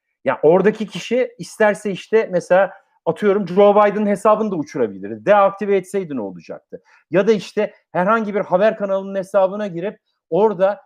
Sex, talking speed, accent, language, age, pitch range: male, 145 wpm, native, Turkish, 50-69, 175-220 Hz